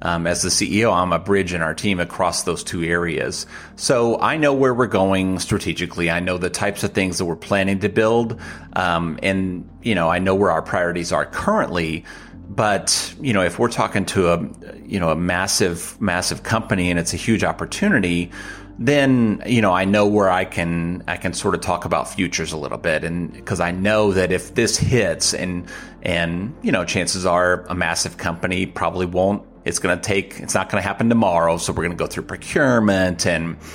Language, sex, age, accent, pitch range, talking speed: English, male, 30-49, American, 85-100 Hz, 210 wpm